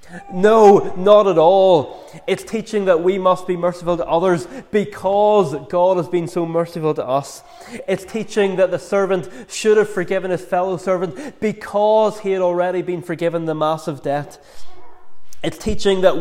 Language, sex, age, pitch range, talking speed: English, male, 20-39, 160-190 Hz, 165 wpm